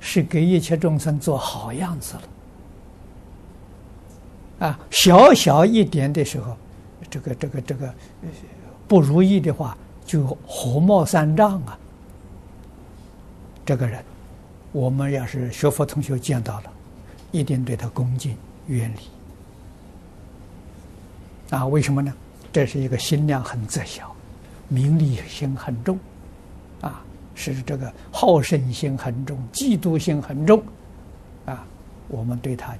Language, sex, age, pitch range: Chinese, male, 60-79, 95-145 Hz